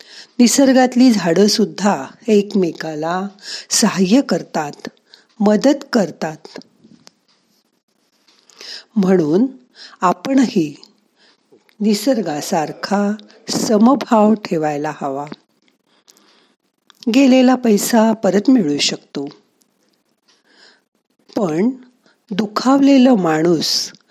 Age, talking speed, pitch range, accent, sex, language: 50-69, 55 wpm, 170-235 Hz, native, female, Marathi